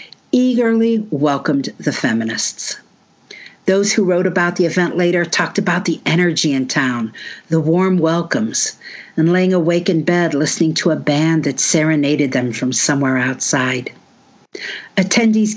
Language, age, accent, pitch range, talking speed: English, 60-79, American, 160-215 Hz, 140 wpm